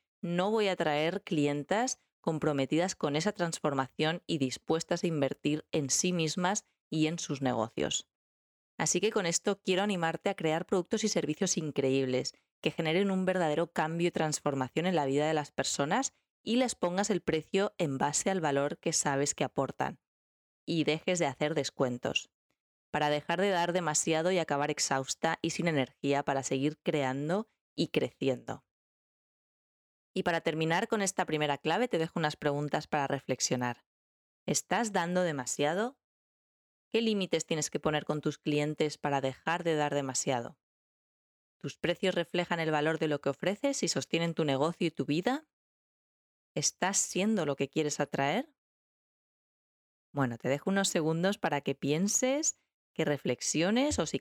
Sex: female